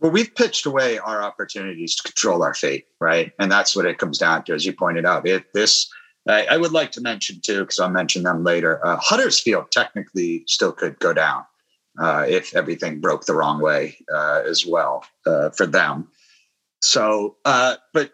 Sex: male